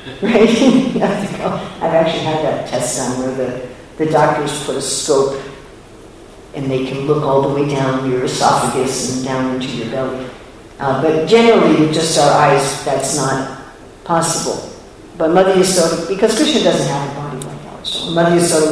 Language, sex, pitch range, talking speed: English, female, 145-170 Hz, 165 wpm